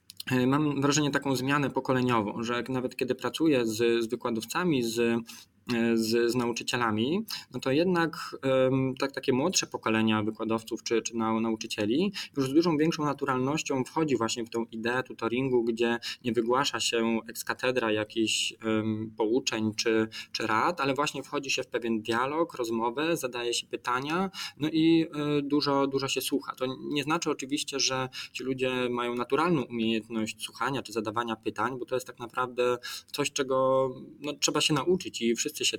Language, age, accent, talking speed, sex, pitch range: Polish, 20-39, native, 160 wpm, male, 115-145 Hz